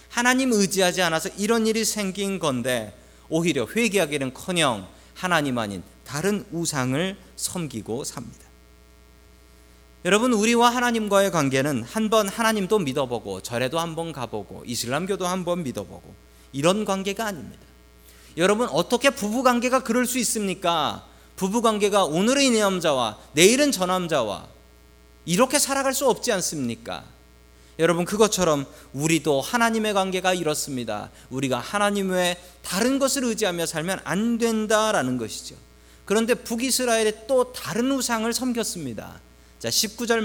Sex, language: male, Korean